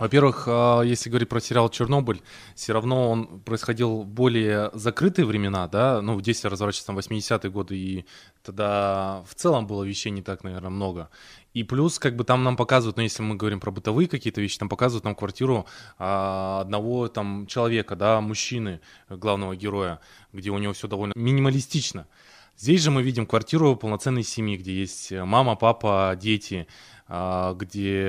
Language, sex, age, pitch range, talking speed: Russian, male, 20-39, 95-115 Hz, 160 wpm